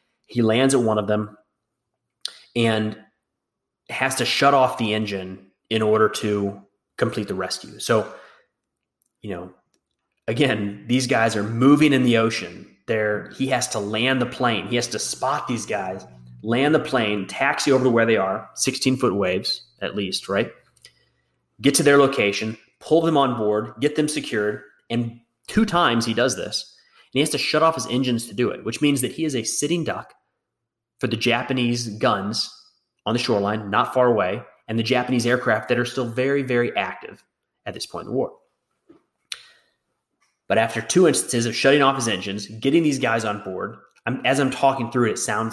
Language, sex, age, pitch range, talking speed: English, male, 30-49, 105-130 Hz, 185 wpm